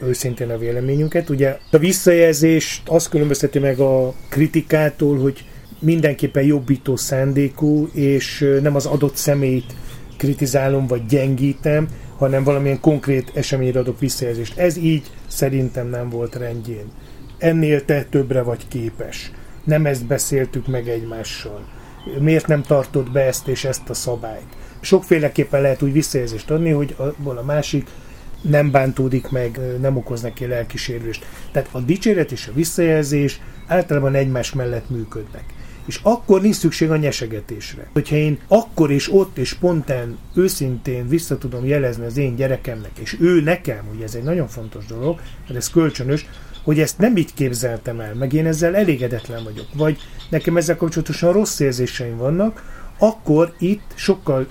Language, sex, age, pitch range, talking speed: Hungarian, male, 30-49, 125-155 Hz, 145 wpm